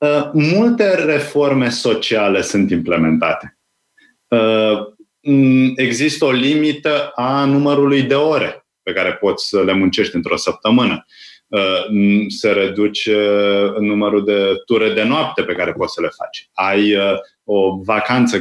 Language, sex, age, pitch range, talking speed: Romanian, male, 30-49, 110-155 Hz, 115 wpm